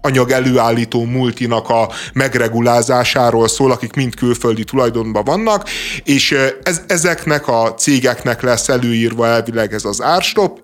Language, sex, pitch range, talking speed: Hungarian, male, 115-140 Hz, 125 wpm